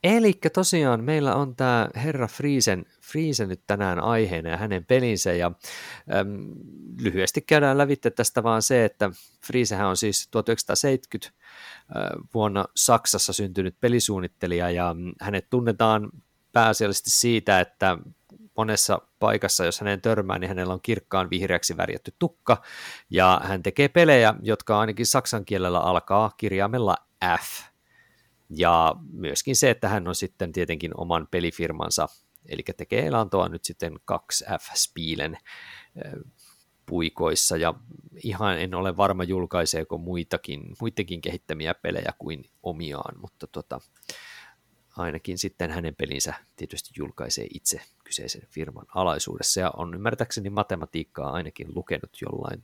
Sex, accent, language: male, native, Finnish